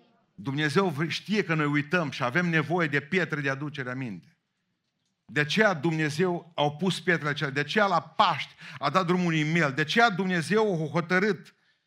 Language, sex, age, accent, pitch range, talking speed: Romanian, male, 50-69, native, 110-180 Hz, 175 wpm